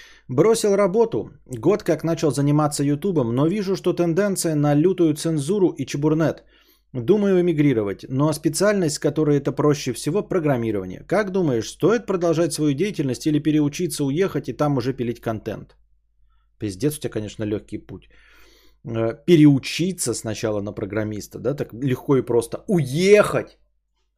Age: 20-39